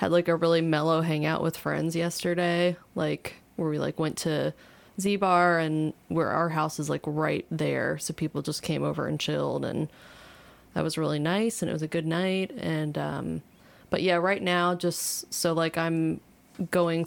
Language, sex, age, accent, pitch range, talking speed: English, female, 20-39, American, 155-175 Hz, 190 wpm